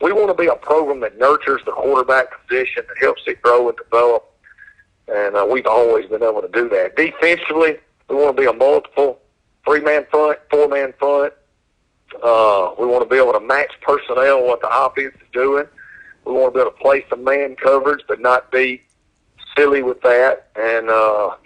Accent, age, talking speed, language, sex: American, 50-69, 195 wpm, English, male